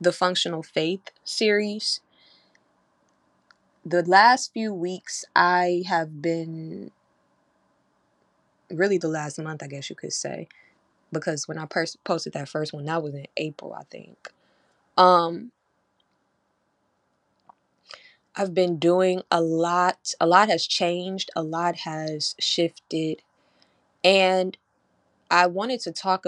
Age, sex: 20-39, female